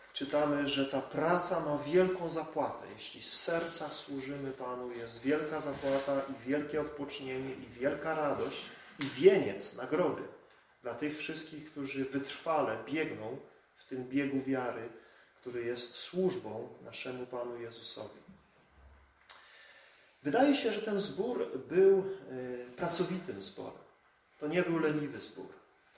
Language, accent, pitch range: Polish, native, 135-180 Hz